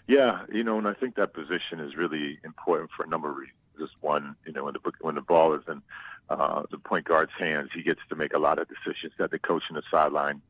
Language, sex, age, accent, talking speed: English, male, 40-59, American, 265 wpm